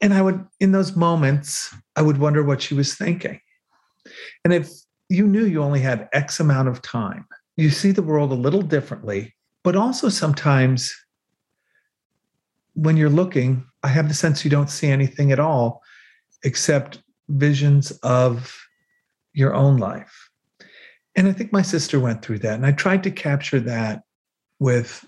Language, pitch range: English, 125-160 Hz